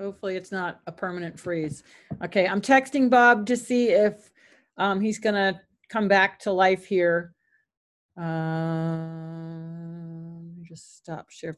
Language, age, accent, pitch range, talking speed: English, 40-59, American, 175-230 Hz, 135 wpm